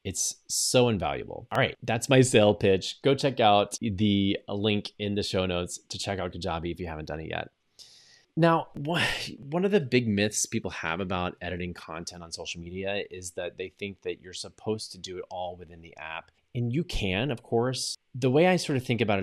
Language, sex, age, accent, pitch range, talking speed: English, male, 20-39, American, 90-120 Hz, 210 wpm